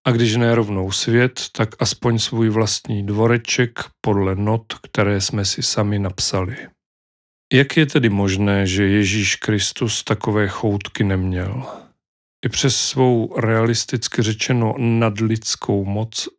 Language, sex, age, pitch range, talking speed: Czech, male, 40-59, 105-125 Hz, 120 wpm